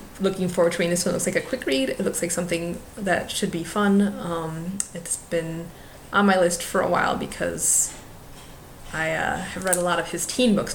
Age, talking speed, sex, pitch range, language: 20-39, 220 wpm, female, 170-195 Hz, English